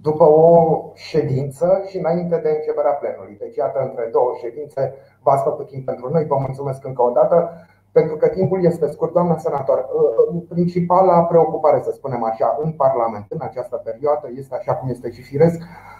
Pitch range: 125-165 Hz